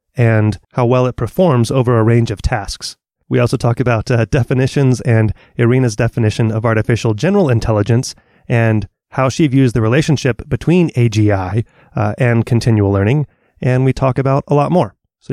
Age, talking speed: 30-49, 170 wpm